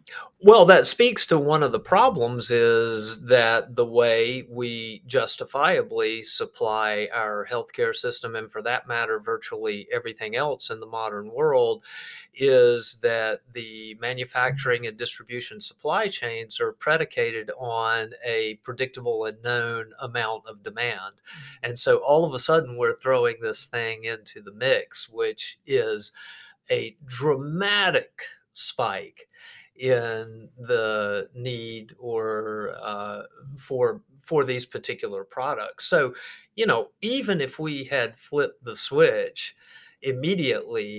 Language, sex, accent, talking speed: English, male, American, 125 wpm